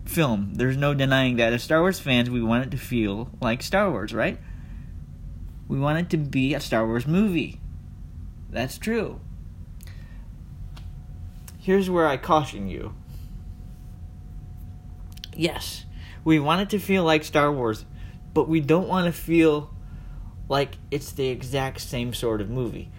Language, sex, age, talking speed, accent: English, male, 20-39, 150 wpm, American